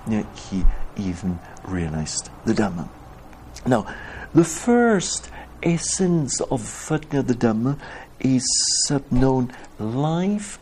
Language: English